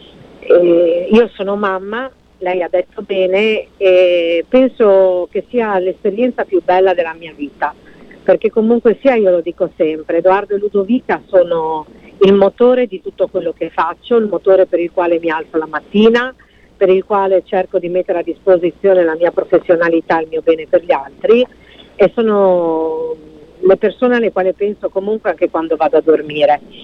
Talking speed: 170 wpm